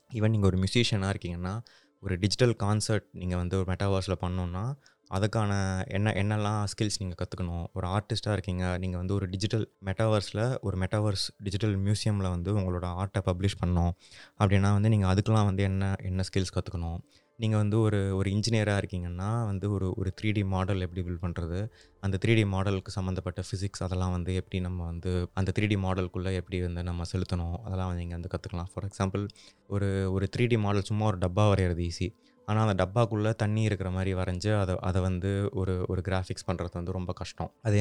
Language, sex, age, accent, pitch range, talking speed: Tamil, male, 20-39, native, 95-105 Hz, 180 wpm